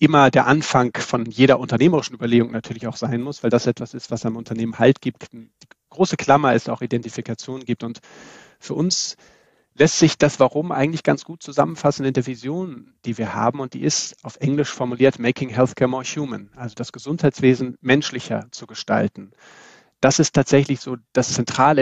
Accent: German